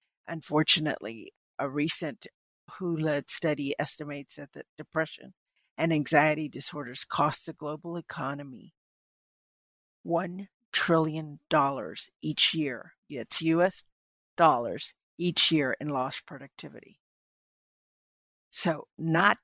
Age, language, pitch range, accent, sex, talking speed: 50-69, English, 140-160 Hz, American, female, 95 wpm